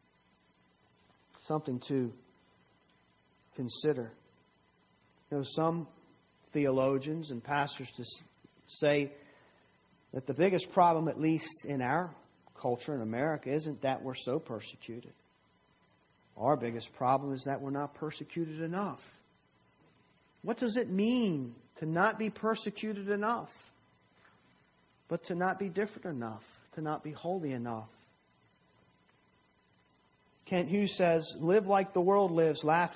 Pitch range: 130-180 Hz